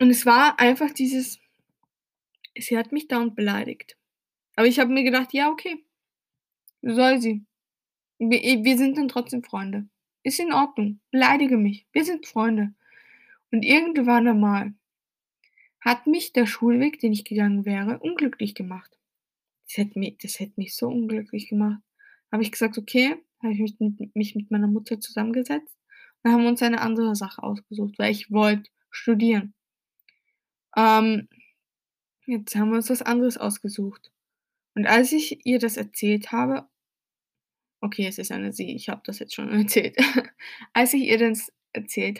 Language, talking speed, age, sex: German, 155 wpm, 10-29, female